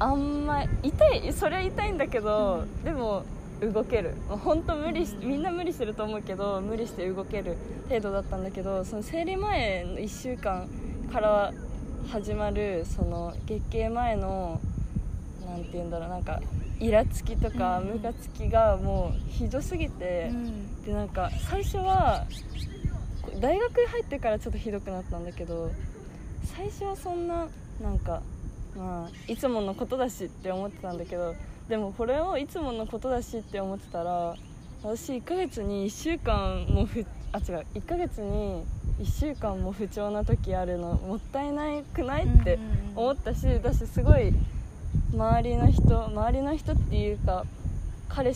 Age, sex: 20-39, female